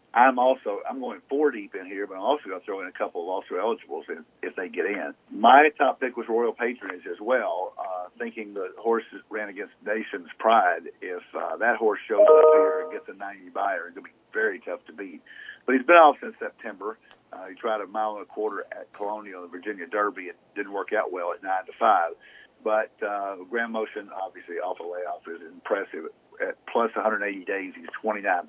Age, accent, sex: 50-69, American, male